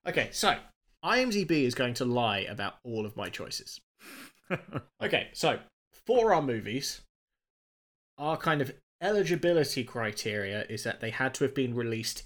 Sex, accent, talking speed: male, British, 145 wpm